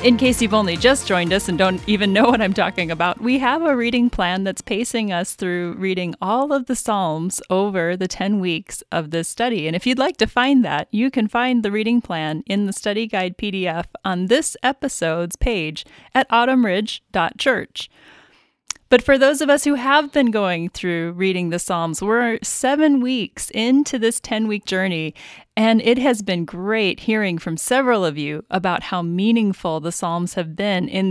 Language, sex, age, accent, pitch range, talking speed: English, female, 30-49, American, 175-235 Hz, 190 wpm